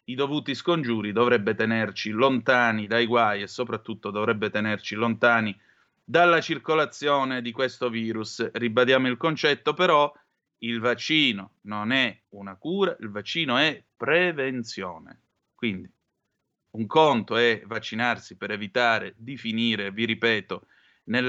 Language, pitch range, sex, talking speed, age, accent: Italian, 110-150 Hz, male, 125 wpm, 30-49, native